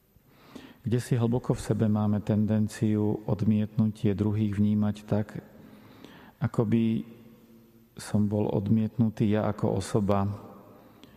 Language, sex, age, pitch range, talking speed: Slovak, male, 40-59, 100-115 Hz, 100 wpm